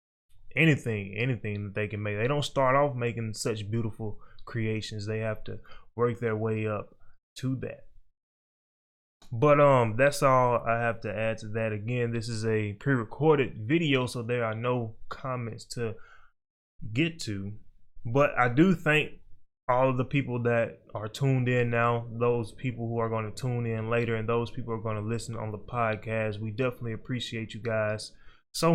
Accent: American